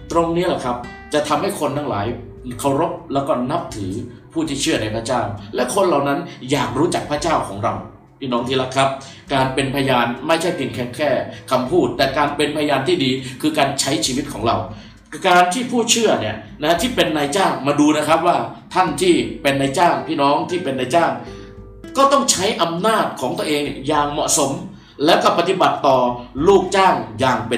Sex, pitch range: male, 120-160 Hz